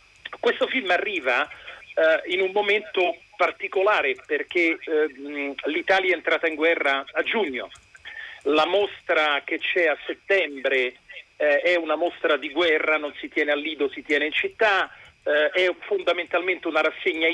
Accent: native